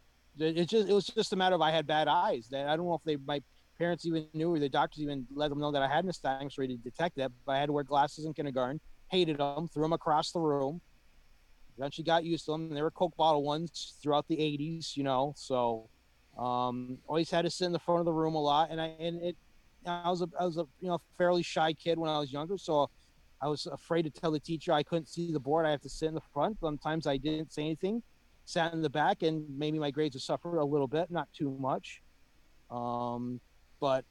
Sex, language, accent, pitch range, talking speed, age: male, English, American, 135-165 Hz, 250 wpm, 30-49